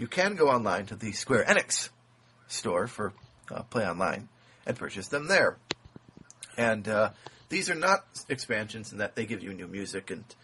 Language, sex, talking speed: English, male, 180 wpm